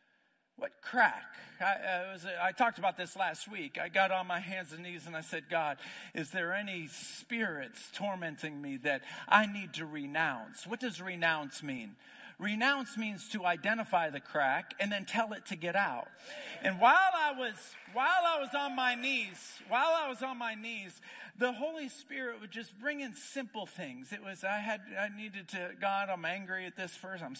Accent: American